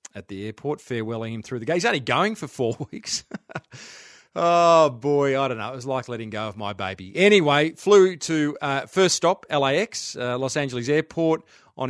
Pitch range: 125-160 Hz